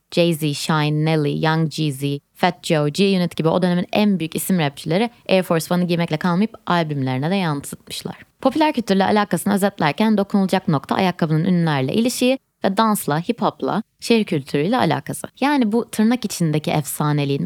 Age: 20-39